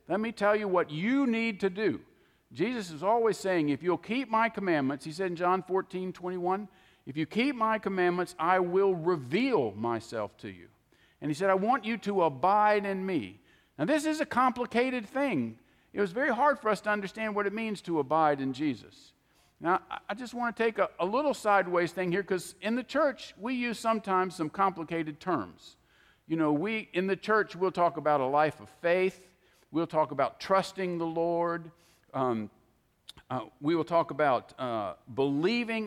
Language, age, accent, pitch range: English, 50-69, American, 160-220 Hz